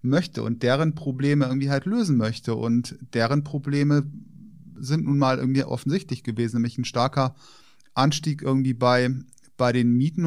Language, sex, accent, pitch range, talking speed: German, male, German, 125-150 Hz, 150 wpm